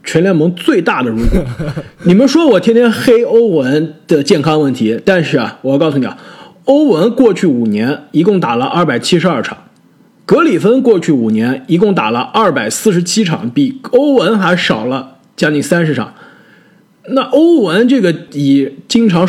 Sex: male